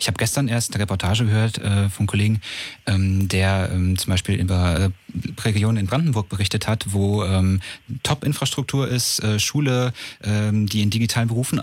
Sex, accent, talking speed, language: male, German, 170 wpm, German